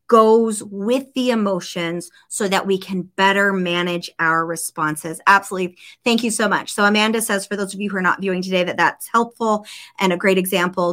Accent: American